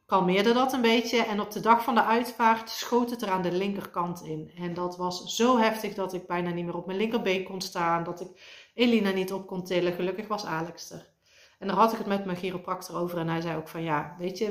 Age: 40-59